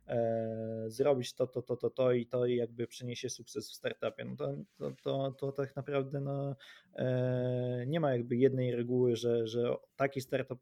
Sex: male